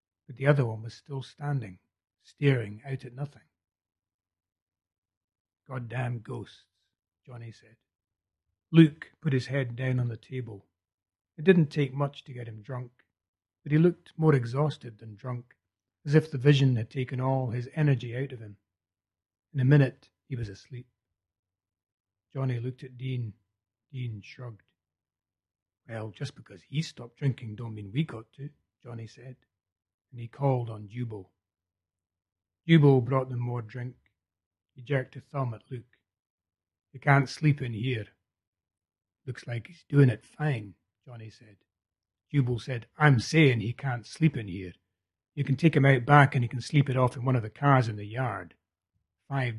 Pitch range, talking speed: 95-135 Hz, 160 wpm